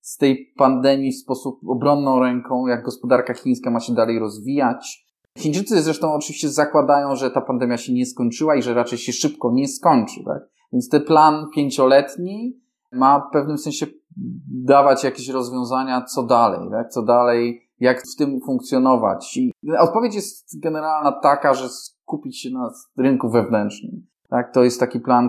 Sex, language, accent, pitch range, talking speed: male, Polish, native, 120-145 Hz, 160 wpm